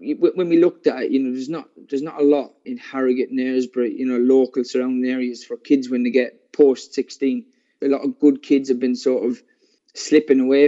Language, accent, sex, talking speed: English, British, male, 225 wpm